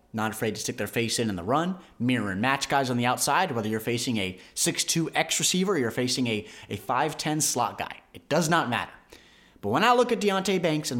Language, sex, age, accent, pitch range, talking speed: English, male, 30-49, American, 125-170 Hz, 240 wpm